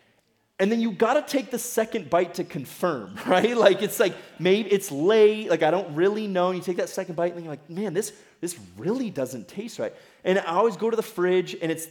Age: 30-49